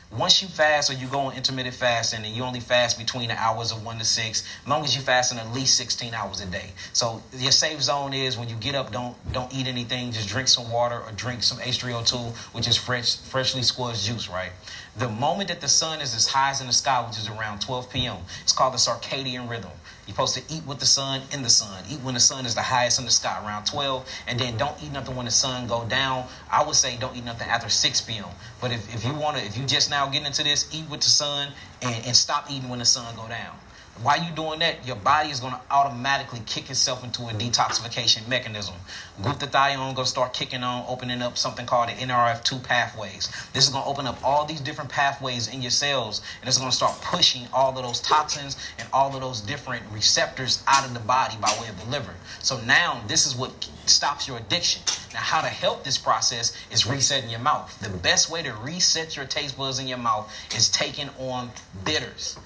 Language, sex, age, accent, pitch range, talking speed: English, male, 30-49, American, 115-135 Hz, 240 wpm